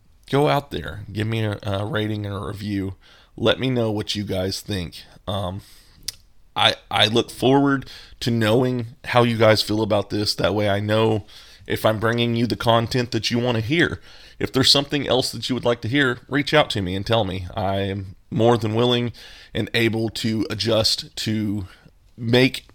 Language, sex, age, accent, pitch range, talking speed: English, male, 30-49, American, 95-115 Hz, 195 wpm